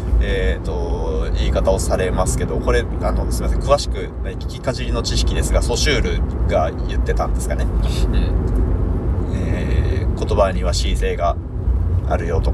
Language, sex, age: Japanese, male, 20-39